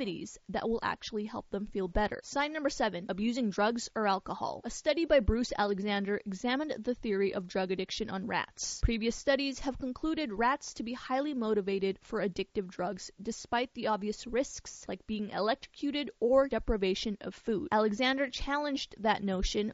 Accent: American